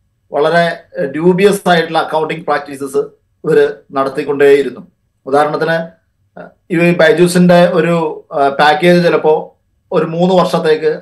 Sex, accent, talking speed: male, native, 85 wpm